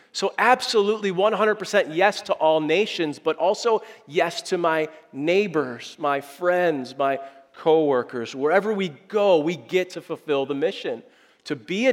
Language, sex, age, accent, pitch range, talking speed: English, male, 40-59, American, 135-195 Hz, 150 wpm